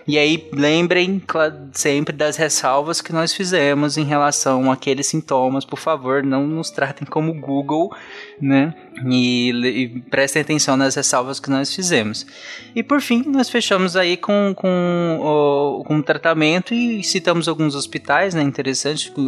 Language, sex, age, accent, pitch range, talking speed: Portuguese, male, 20-39, Brazilian, 125-155 Hz, 150 wpm